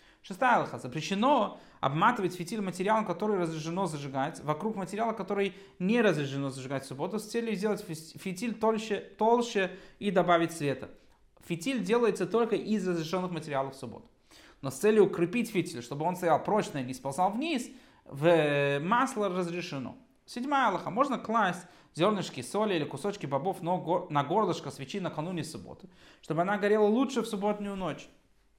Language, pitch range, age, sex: Russian, 155-210 Hz, 30-49, male